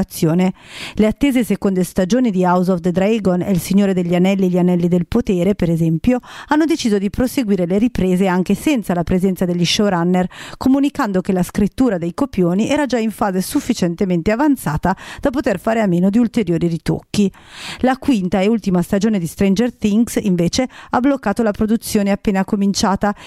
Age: 40-59